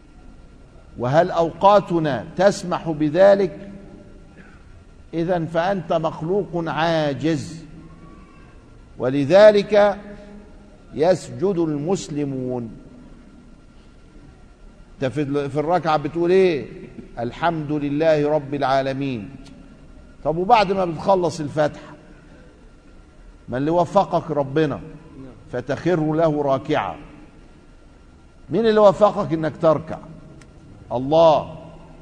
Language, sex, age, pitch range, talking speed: Arabic, male, 50-69, 115-170 Hz, 70 wpm